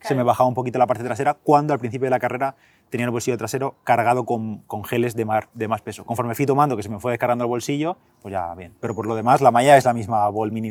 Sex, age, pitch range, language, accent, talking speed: male, 20-39, 110-135 Hz, Spanish, Spanish, 285 wpm